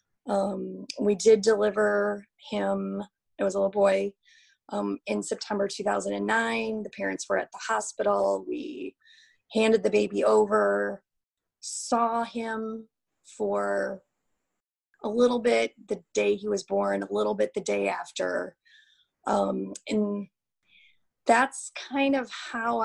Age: 30-49